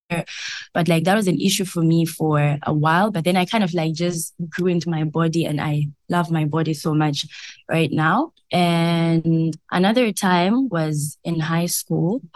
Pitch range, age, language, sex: 160-190 Hz, 20-39, English, female